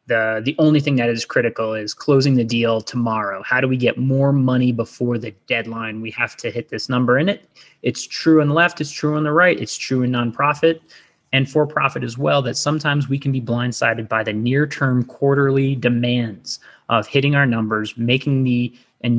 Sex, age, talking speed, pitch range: male, 20-39, 205 wpm, 115-135 Hz